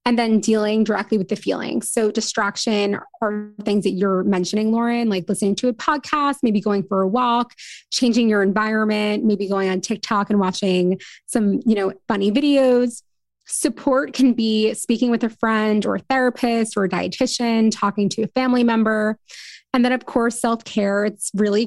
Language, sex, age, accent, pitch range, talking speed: English, female, 20-39, American, 200-245 Hz, 175 wpm